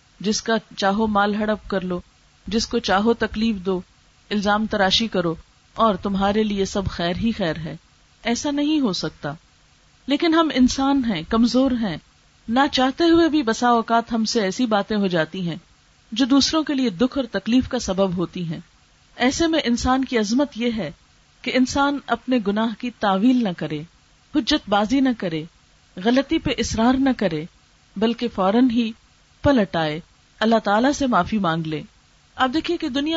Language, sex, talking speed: Urdu, female, 170 wpm